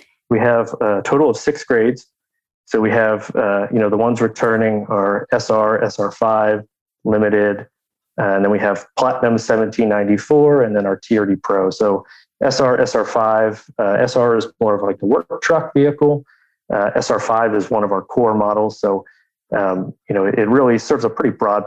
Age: 30-49